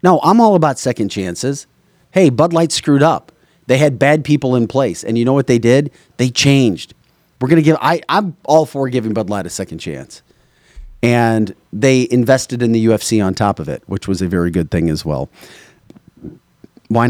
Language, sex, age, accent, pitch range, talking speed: English, male, 30-49, American, 100-130 Hz, 200 wpm